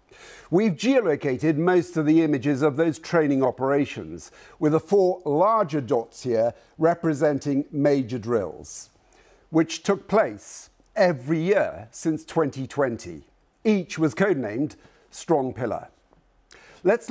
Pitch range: 140-180 Hz